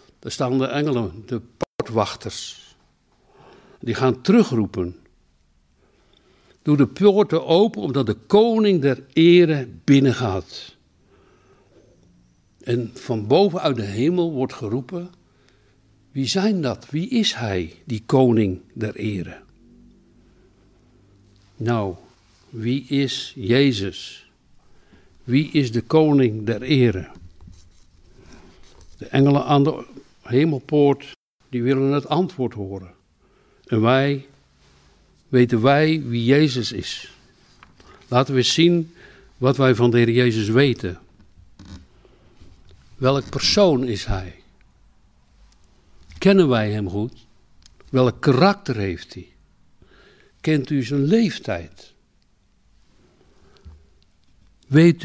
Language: Dutch